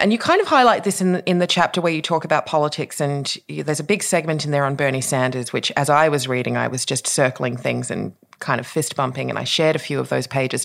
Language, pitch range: English, 135-180 Hz